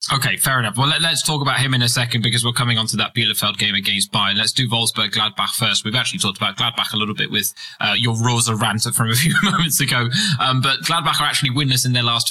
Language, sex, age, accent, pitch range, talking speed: English, male, 20-39, British, 115-135 Hz, 260 wpm